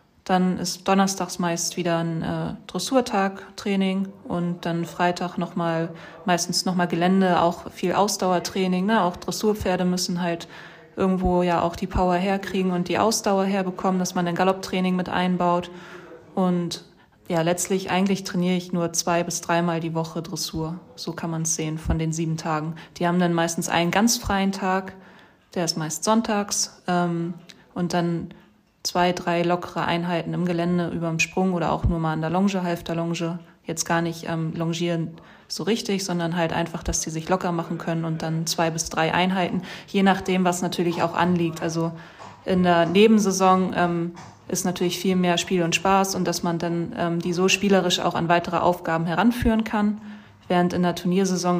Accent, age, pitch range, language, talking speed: German, 20-39, 170-185 Hz, German, 180 wpm